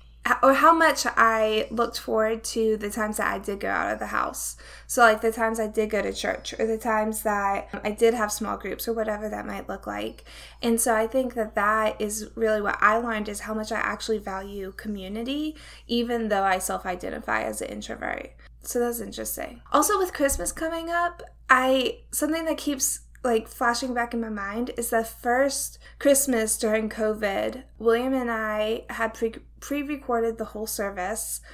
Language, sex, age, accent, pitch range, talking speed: English, female, 10-29, American, 215-250 Hz, 190 wpm